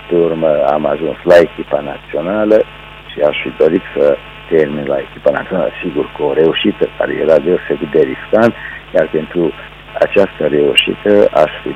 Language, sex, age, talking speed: Romanian, male, 60-79, 155 wpm